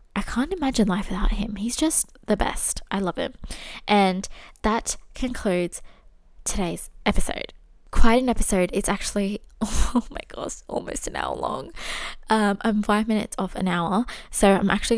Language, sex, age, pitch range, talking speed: English, female, 20-39, 185-230 Hz, 160 wpm